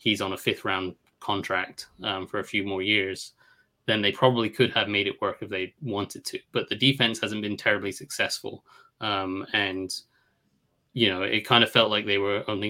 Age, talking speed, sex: 20-39, 205 wpm, male